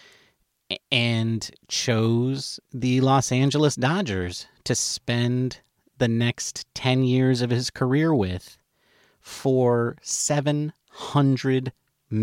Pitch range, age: 120-160 Hz, 30-49